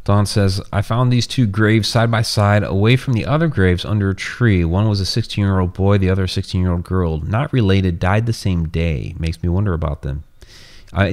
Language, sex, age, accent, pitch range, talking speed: English, male, 30-49, American, 85-100 Hz, 230 wpm